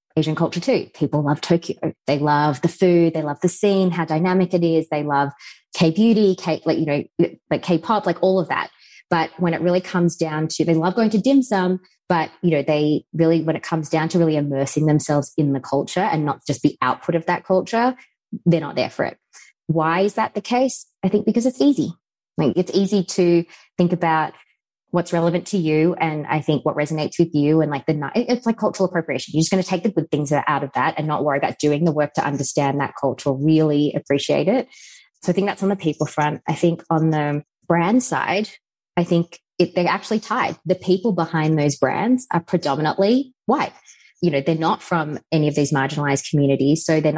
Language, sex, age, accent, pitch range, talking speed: English, female, 20-39, Australian, 150-185 Hz, 215 wpm